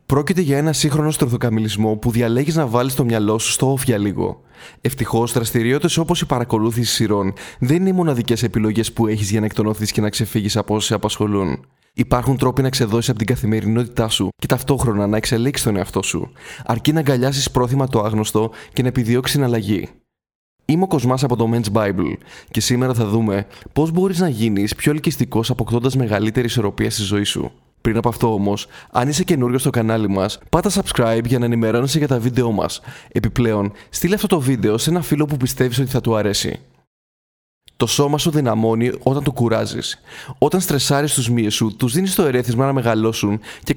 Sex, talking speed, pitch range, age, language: male, 190 wpm, 110-135 Hz, 20-39, Greek